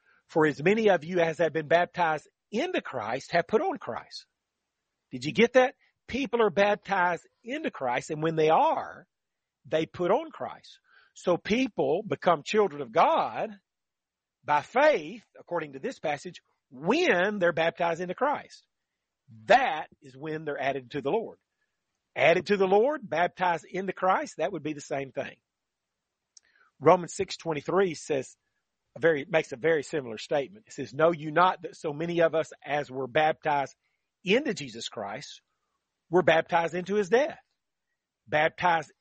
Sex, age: male, 40-59